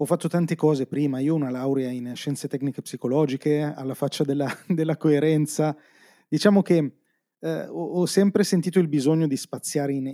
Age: 30-49